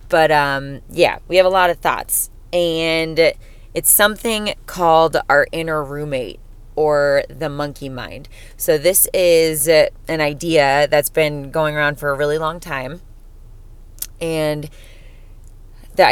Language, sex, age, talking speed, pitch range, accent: English, female, 20-39, 135 wpm, 145-170 Hz, American